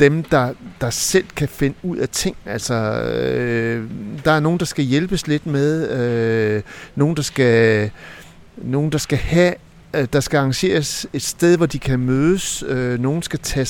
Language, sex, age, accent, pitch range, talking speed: Danish, male, 60-79, native, 115-145 Hz, 180 wpm